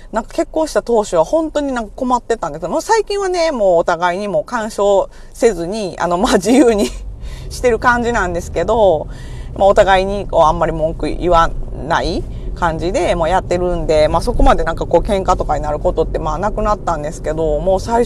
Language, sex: Japanese, female